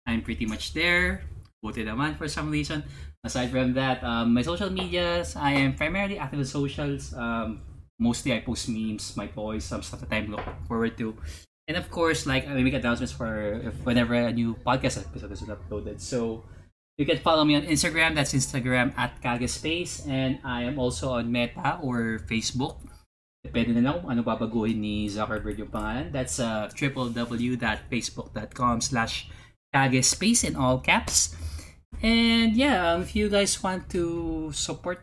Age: 20-39